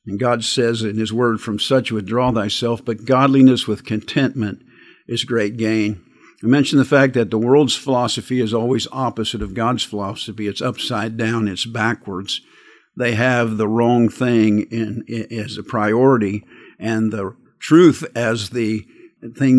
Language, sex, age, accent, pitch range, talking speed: English, male, 50-69, American, 110-130 Hz, 155 wpm